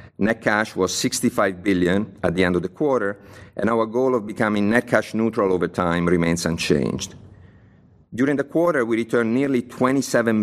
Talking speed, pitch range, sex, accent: 175 wpm, 95-115 Hz, male, Italian